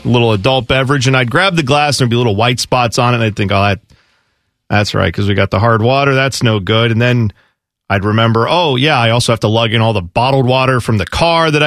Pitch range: 115-160 Hz